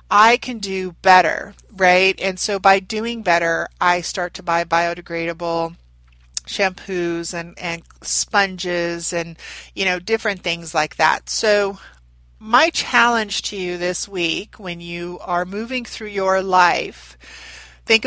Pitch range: 170-215 Hz